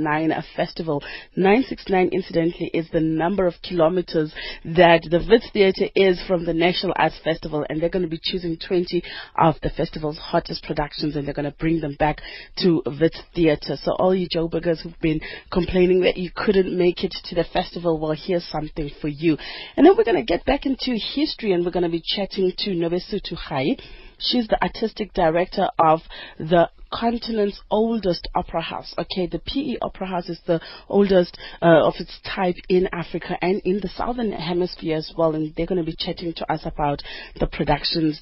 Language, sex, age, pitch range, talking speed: English, female, 30-49, 160-185 Hz, 190 wpm